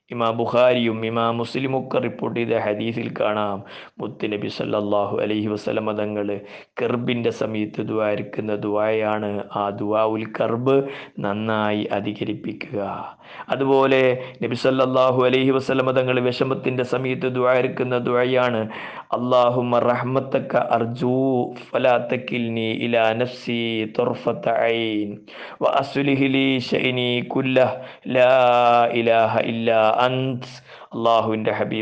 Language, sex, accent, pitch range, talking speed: Malayalam, male, native, 110-130 Hz, 60 wpm